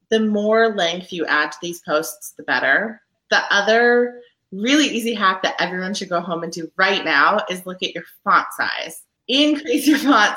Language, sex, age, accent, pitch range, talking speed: English, female, 30-49, American, 165-230 Hz, 190 wpm